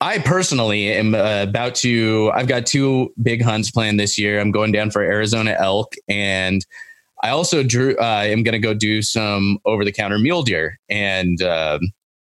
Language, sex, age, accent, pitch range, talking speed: English, male, 20-39, American, 100-125 Hz, 175 wpm